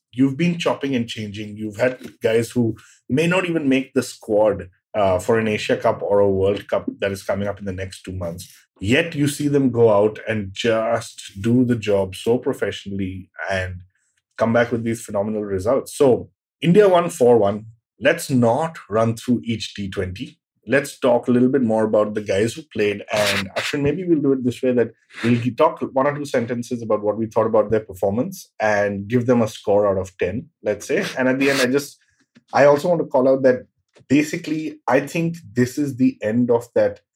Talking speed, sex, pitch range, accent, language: 205 wpm, male, 100-130 Hz, Indian, English